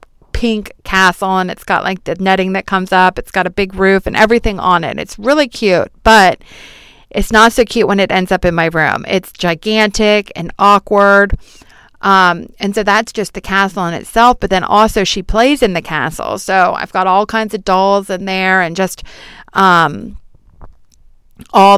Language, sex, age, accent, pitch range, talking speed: English, female, 40-59, American, 180-210 Hz, 190 wpm